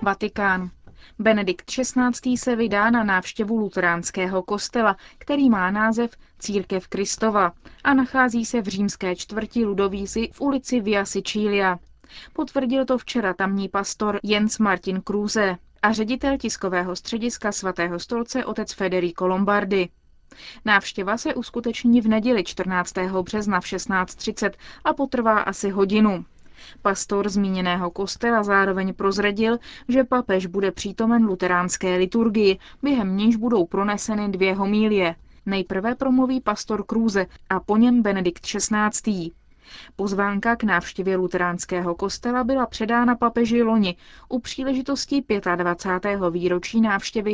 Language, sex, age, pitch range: Czech, female, 20-39, 190-235 Hz